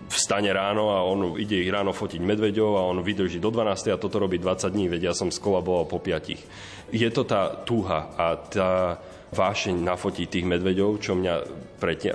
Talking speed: 200 wpm